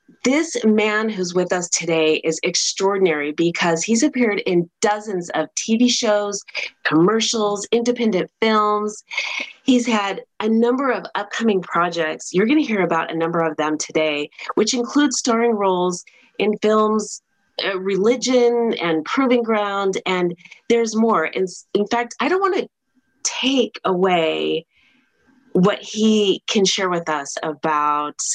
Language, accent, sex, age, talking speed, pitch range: English, American, female, 30-49, 140 wpm, 160-225 Hz